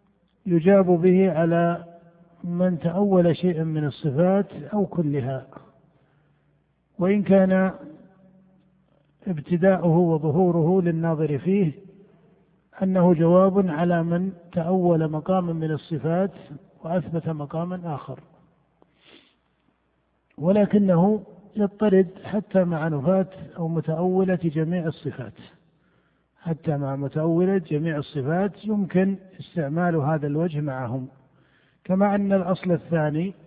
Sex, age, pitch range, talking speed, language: male, 50-69, 160-190 Hz, 90 wpm, Arabic